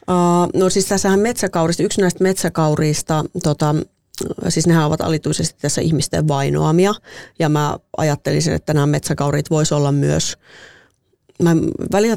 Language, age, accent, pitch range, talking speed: Finnish, 30-49, native, 150-180 Hz, 135 wpm